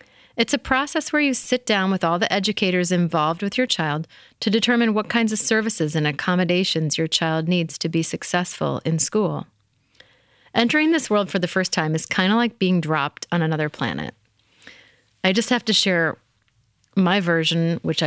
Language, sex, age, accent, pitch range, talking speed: English, female, 30-49, American, 155-215 Hz, 185 wpm